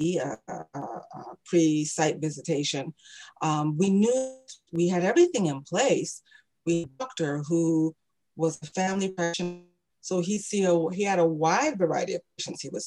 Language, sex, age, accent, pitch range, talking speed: English, female, 40-59, American, 165-245 Hz, 155 wpm